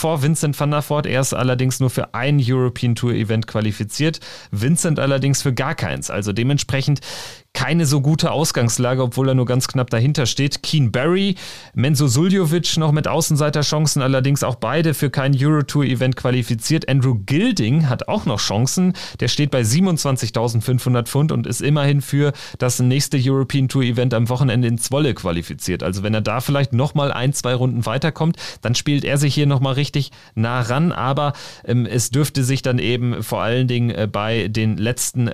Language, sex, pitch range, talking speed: German, male, 120-145 Hz, 180 wpm